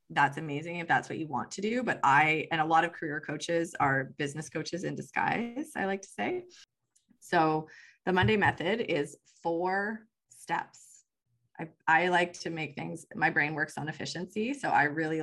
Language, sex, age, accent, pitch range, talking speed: English, female, 20-39, American, 155-190 Hz, 185 wpm